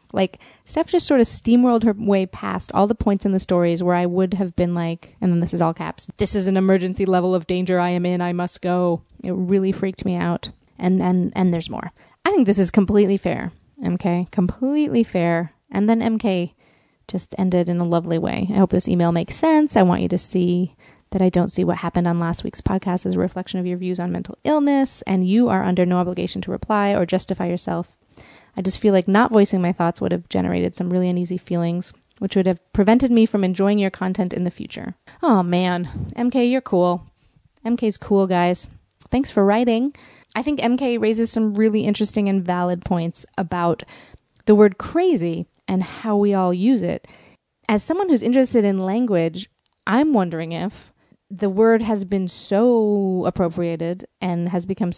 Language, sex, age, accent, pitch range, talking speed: English, female, 30-49, American, 175-210 Hz, 200 wpm